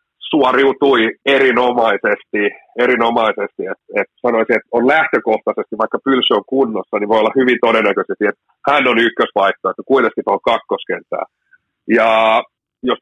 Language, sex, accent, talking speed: Finnish, male, native, 130 wpm